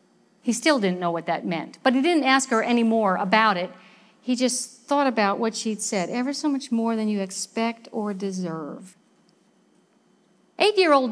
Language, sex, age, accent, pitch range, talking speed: English, female, 50-69, American, 205-260 Hz, 180 wpm